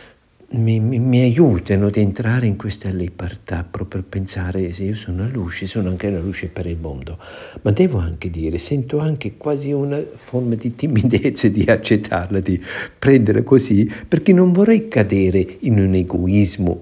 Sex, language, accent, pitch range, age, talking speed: male, Italian, native, 90-120 Hz, 50-69, 170 wpm